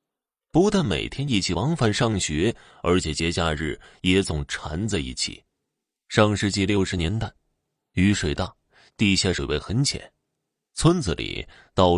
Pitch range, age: 80-110 Hz, 30-49